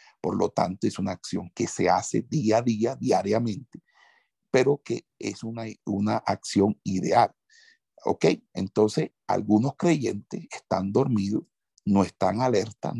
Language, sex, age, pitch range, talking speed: Spanish, male, 60-79, 100-115 Hz, 135 wpm